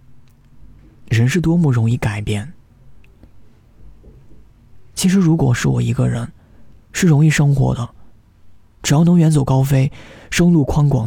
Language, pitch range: Chinese, 100-120 Hz